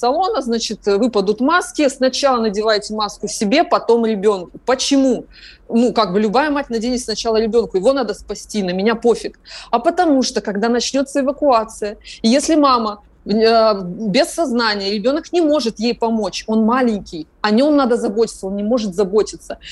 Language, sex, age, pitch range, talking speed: Russian, female, 30-49, 205-255 Hz, 155 wpm